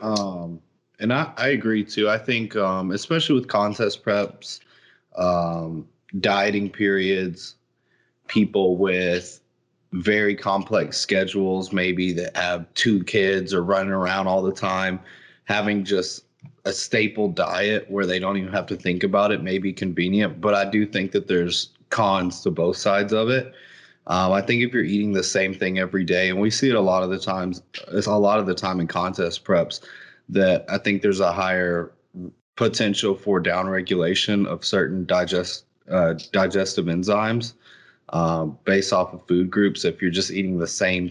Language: English